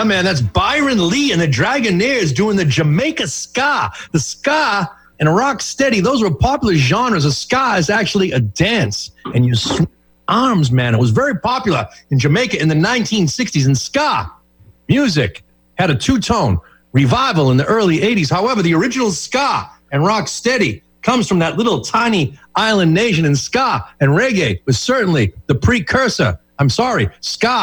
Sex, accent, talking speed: male, American, 165 wpm